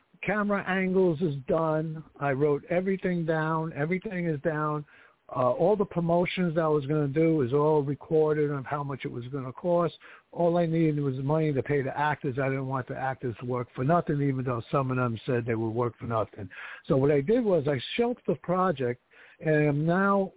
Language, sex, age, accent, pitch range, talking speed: English, male, 60-79, American, 135-175 Hz, 215 wpm